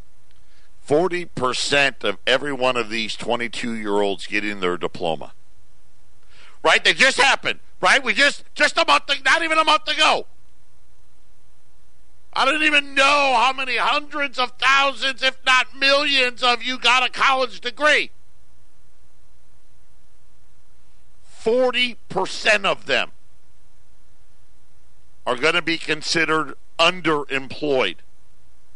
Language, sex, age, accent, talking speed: English, male, 50-69, American, 110 wpm